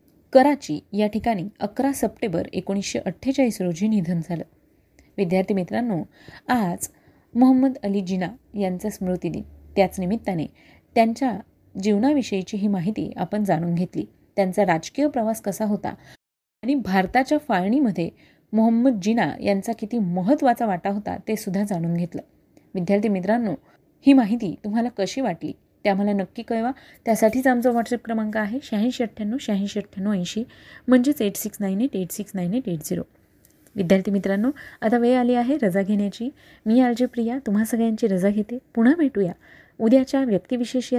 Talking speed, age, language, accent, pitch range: 125 wpm, 30-49, Marathi, native, 195-245 Hz